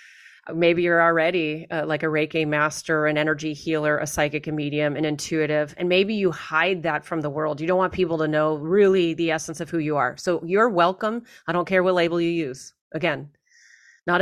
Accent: American